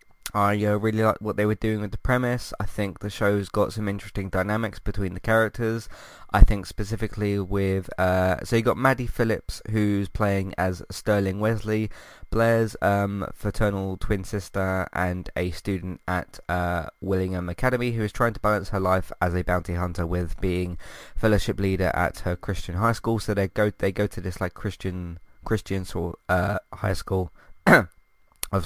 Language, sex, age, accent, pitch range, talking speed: English, male, 20-39, British, 95-110 Hz, 175 wpm